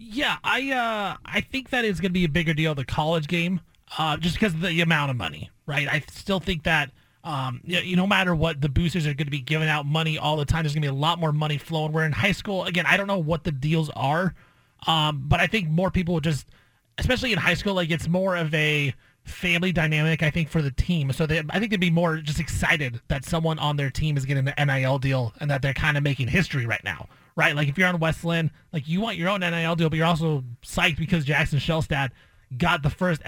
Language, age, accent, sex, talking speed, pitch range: English, 30-49, American, male, 255 wpm, 145-175 Hz